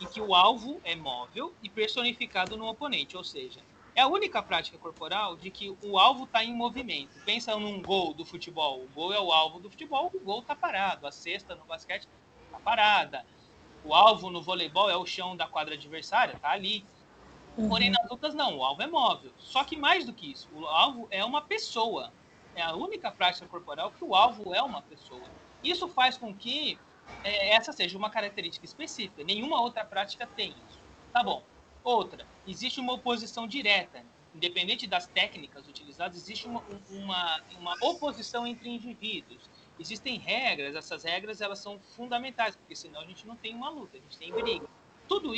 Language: Portuguese